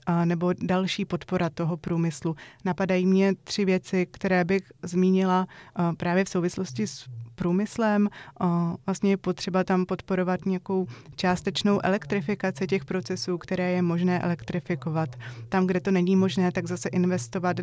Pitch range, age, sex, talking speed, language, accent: 170-190 Hz, 20-39, female, 135 wpm, Czech, native